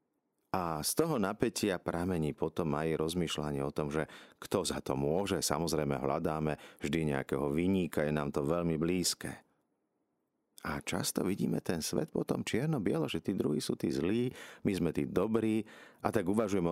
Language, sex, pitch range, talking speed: Slovak, male, 75-90 Hz, 160 wpm